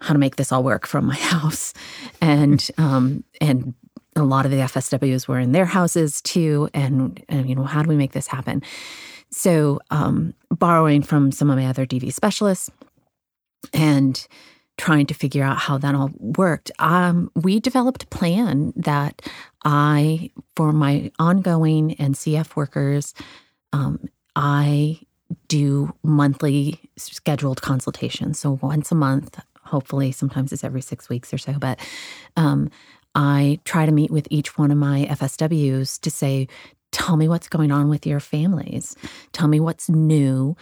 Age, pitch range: 30-49, 140-160 Hz